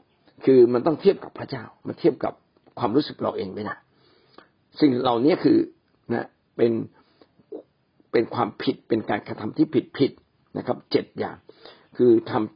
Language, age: Thai, 60-79